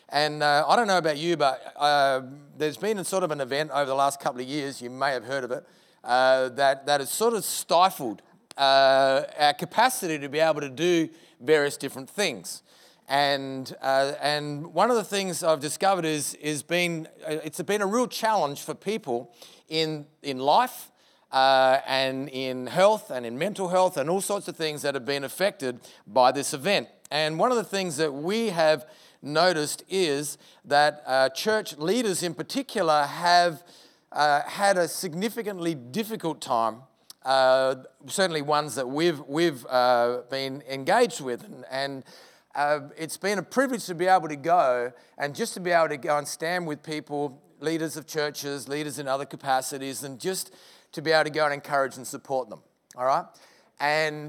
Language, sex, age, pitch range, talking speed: English, male, 40-59, 140-175 Hz, 185 wpm